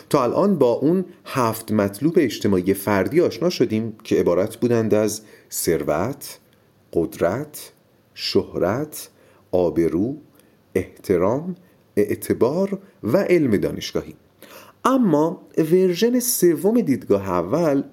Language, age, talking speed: Persian, 40-59, 95 wpm